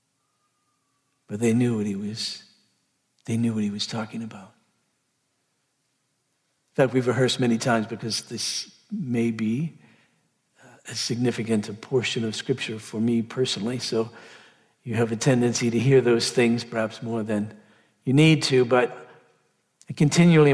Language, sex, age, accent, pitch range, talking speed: English, male, 60-79, American, 115-155 Hz, 145 wpm